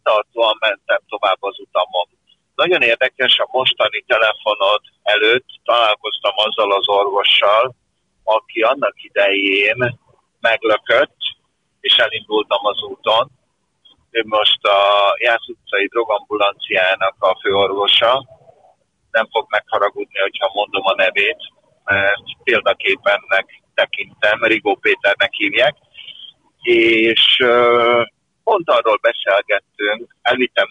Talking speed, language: 95 wpm, Hungarian